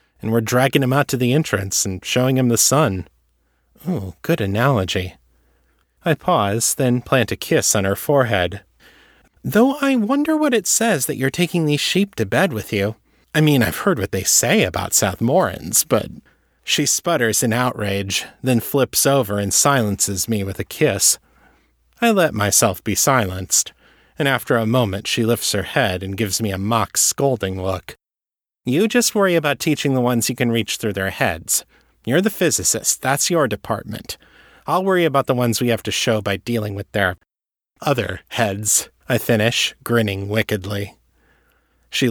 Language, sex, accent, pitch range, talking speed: English, male, American, 100-140 Hz, 175 wpm